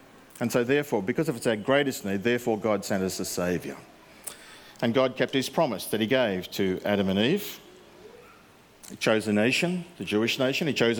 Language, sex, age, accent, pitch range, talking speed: English, male, 50-69, Australian, 110-140 Hz, 195 wpm